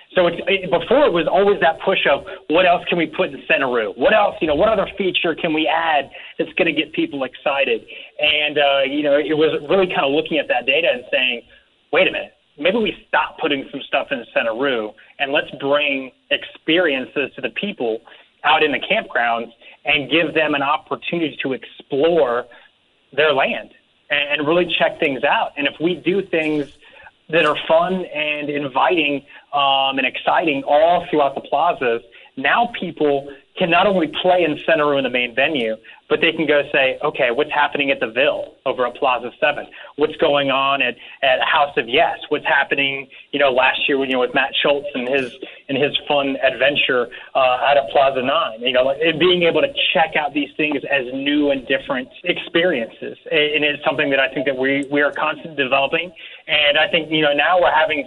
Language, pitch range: English, 140-175 Hz